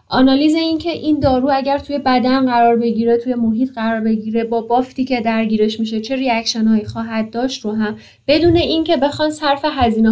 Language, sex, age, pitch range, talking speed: Persian, female, 10-29, 210-255 Hz, 170 wpm